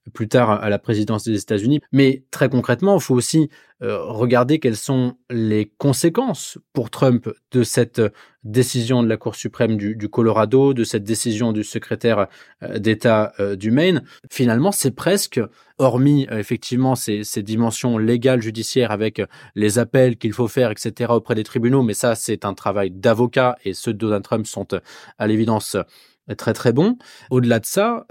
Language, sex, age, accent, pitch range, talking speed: French, male, 20-39, French, 110-130 Hz, 165 wpm